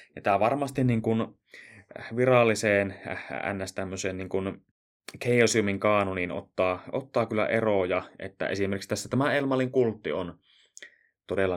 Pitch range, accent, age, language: 95-115 Hz, native, 20-39, Finnish